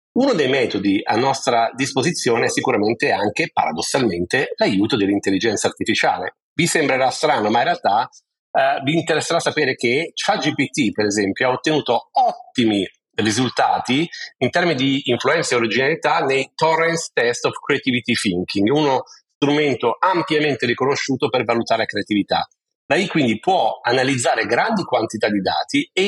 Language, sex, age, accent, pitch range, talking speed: Italian, male, 40-59, native, 120-170 Hz, 140 wpm